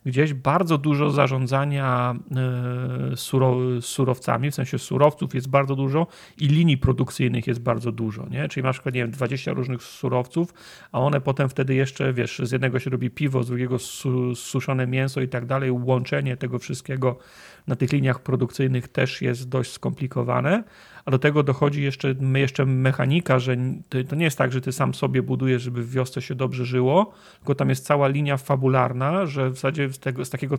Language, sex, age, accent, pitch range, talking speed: Polish, male, 40-59, native, 125-140 Hz, 170 wpm